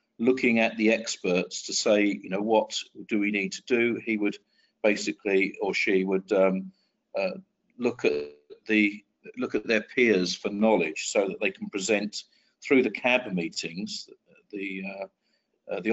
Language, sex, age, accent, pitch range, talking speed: English, male, 50-69, British, 95-120 Hz, 165 wpm